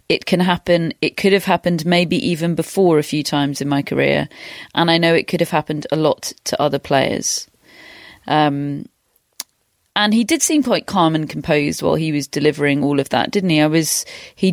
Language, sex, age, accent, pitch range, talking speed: English, female, 30-49, British, 155-195 Hz, 200 wpm